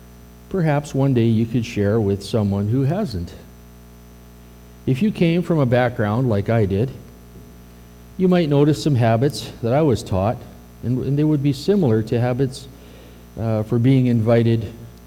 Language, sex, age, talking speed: English, male, 50-69, 160 wpm